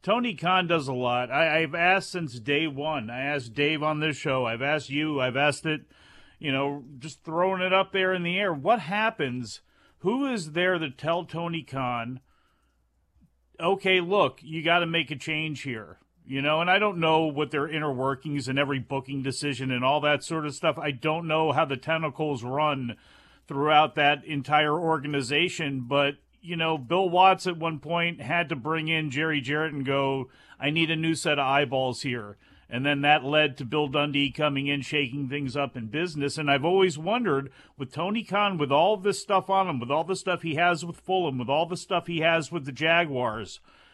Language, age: English, 40-59